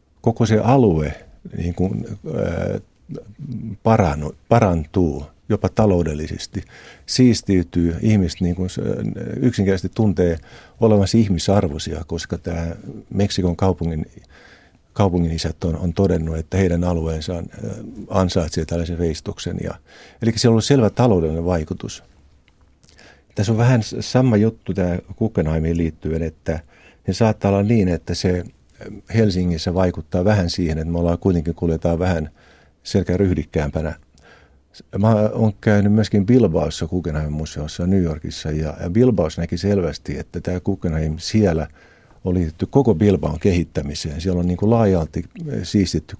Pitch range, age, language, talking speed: 80-105 Hz, 50-69, Finnish, 120 wpm